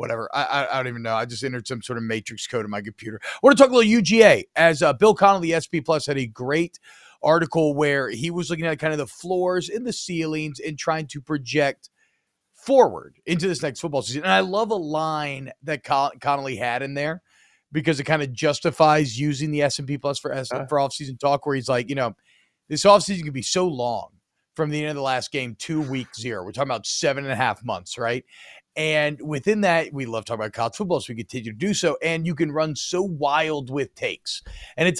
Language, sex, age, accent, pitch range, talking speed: English, male, 40-59, American, 140-185 Hz, 235 wpm